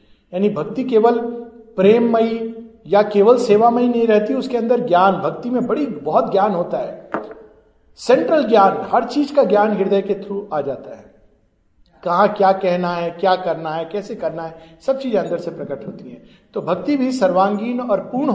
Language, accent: Hindi, native